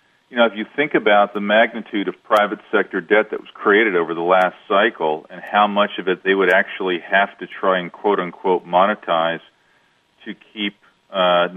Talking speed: 185 wpm